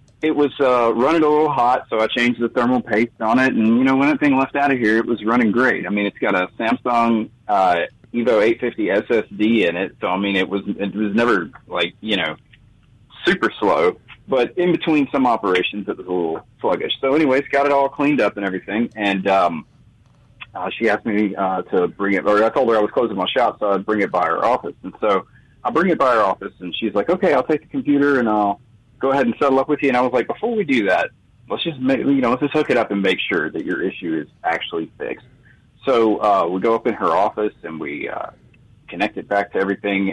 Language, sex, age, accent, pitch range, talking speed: English, male, 30-49, American, 105-140 Hz, 250 wpm